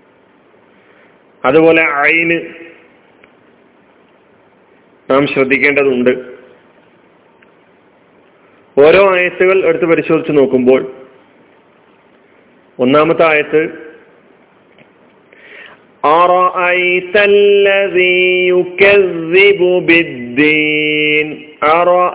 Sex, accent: male, native